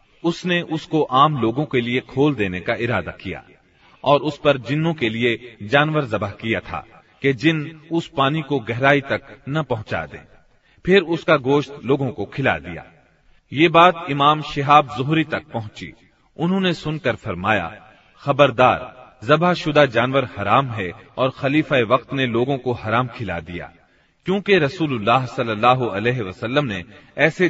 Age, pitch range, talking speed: 40-59, 115-150 Hz, 150 wpm